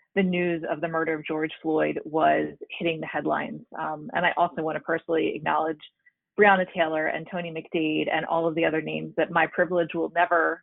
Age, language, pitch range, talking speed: 30-49, English, 160-190 Hz, 205 wpm